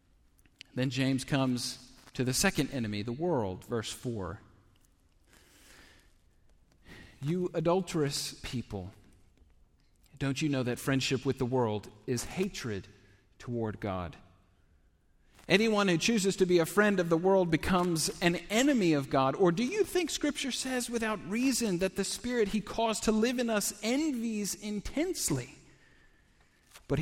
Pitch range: 115-190 Hz